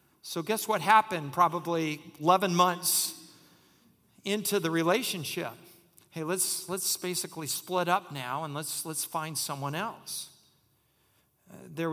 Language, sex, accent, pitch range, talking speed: English, male, American, 160-190 Hz, 125 wpm